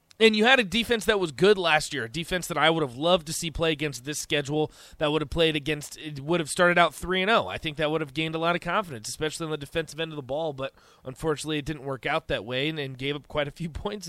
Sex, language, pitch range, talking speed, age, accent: male, English, 150-205 Hz, 295 wpm, 20-39, American